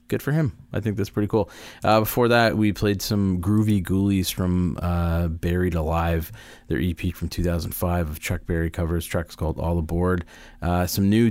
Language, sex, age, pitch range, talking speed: English, male, 30-49, 80-100 Hz, 185 wpm